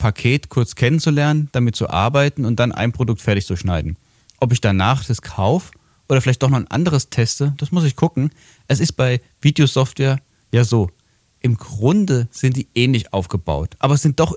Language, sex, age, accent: German, male, 30-49, German